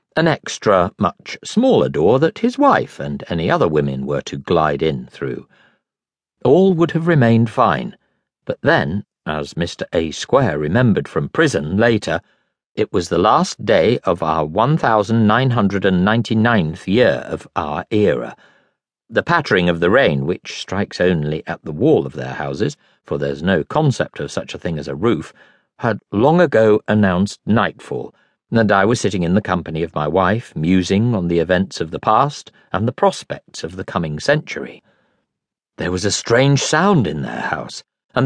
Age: 50-69